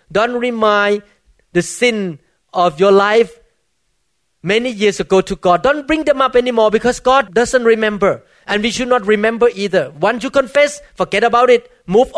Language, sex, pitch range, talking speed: English, male, 170-230 Hz, 170 wpm